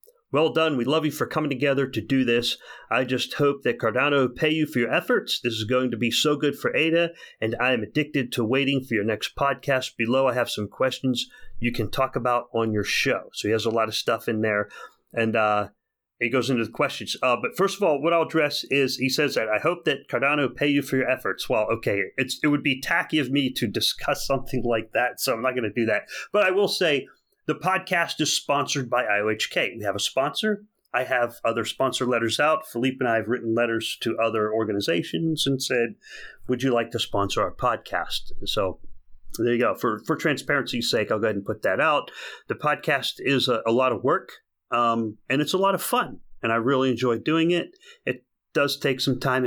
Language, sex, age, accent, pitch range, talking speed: English, male, 30-49, American, 115-150 Hz, 230 wpm